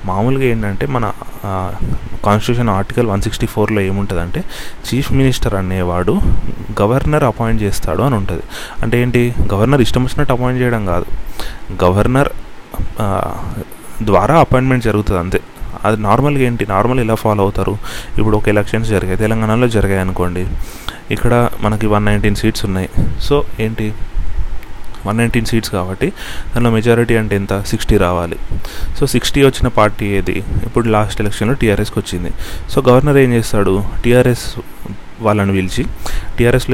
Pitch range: 95-120 Hz